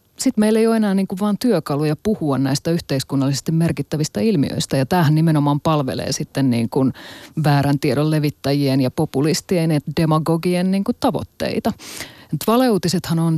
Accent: native